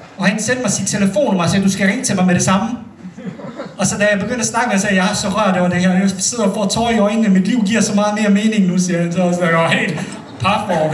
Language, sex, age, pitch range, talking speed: Danish, male, 30-49, 170-205 Hz, 300 wpm